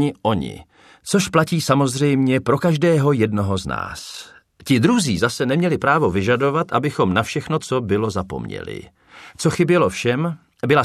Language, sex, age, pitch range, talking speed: Czech, male, 40-59, 110-150 Hz, 140 wpm